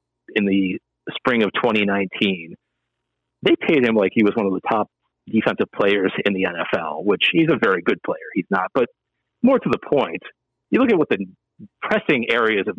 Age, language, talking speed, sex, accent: 40-59, English, 190 wpm, male, American